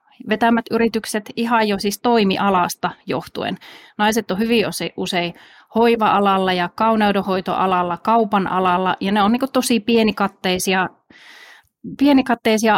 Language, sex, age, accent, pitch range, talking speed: Finnish, female, 30-49, native, 185-225 Hz, 110 wpm